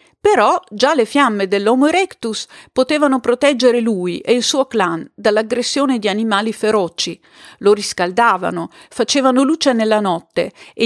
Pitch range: 195-255 Hz